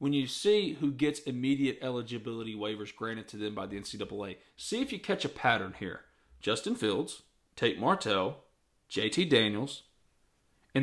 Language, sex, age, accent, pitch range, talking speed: English, male, 40-59, American, 125-160 Hz, 155 wpm